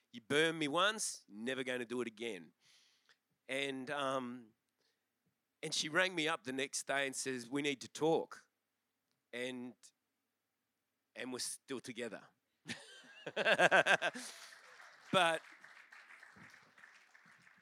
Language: English